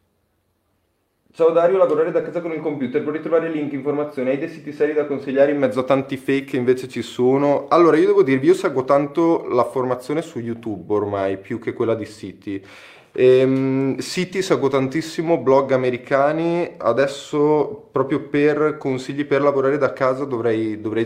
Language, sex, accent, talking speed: Italian, male, native, 170 wpm